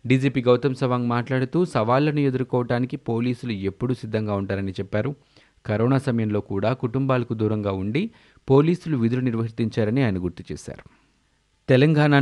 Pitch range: 105-135 Hz